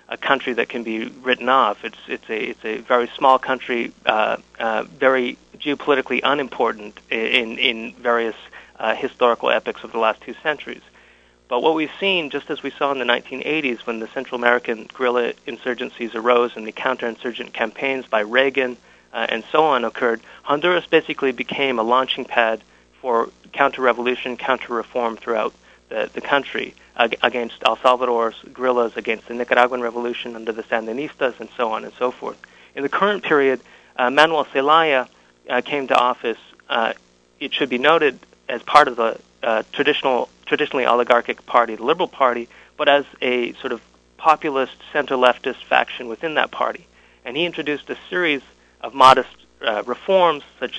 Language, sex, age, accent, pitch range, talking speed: English, male, 30-49, American, 115-135 Hz, 160 wpm